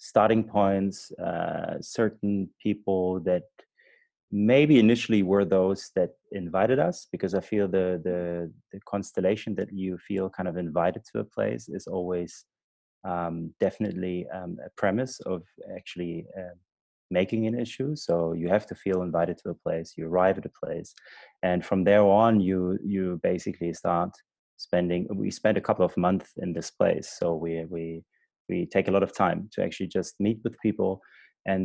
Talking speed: 170 wpm